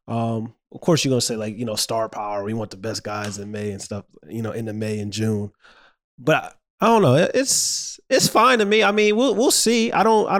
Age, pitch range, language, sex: 20-39, 115-160 Hz, English, male